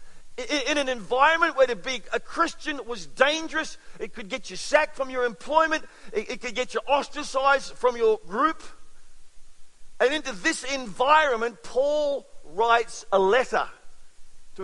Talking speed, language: 145 wpm, English